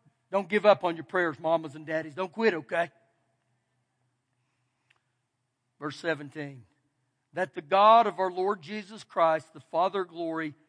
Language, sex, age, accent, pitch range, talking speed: English, male, 50-69, American, 185-290 Hz, 145 wpm